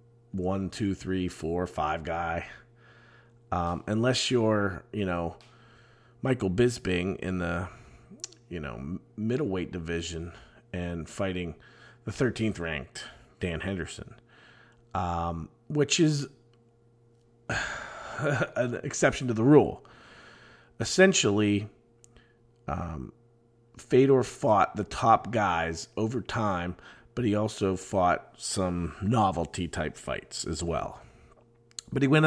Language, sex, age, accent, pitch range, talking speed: English, male, 40-59, American, 100-120 Hz, 105 wpm